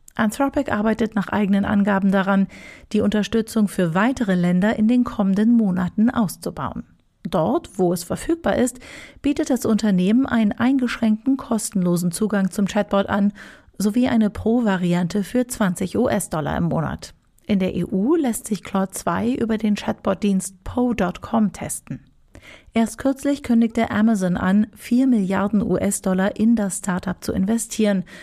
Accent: German